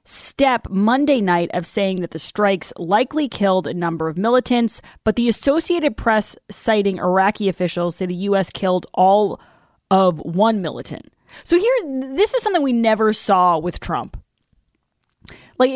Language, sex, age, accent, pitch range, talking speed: English, female, 20-39, American, 200-300 Hz, 150 wpm